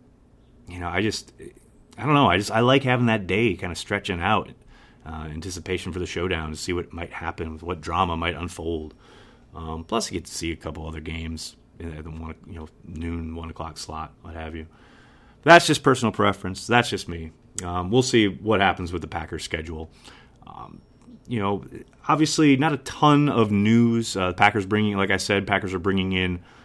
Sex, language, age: male, English, 30-49